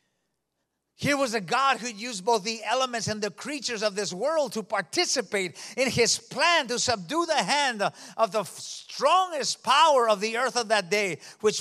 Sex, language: male, English